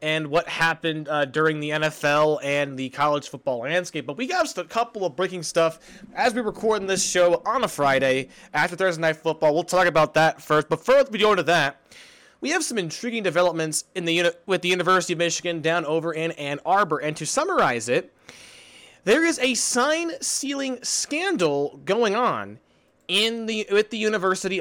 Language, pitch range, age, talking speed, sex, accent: English, 155-215 Hz, 20-39, 195 wpm, male, American